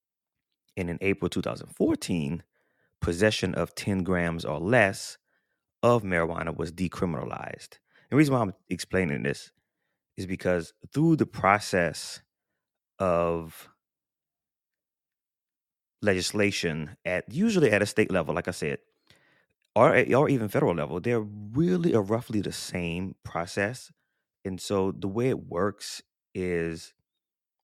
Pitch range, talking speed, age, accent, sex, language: 85-100 Hz, 120 wpm, 30-49, American, male, English